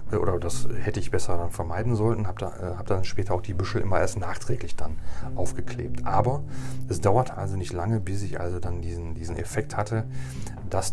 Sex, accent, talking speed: male, German, 200 wpm